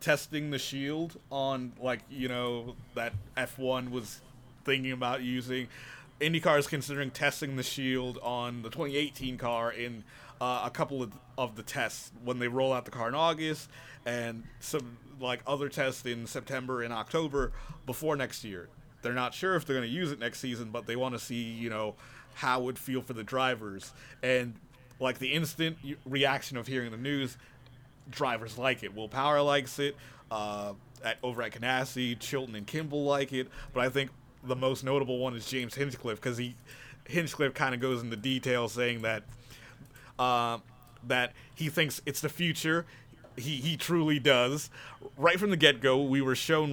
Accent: American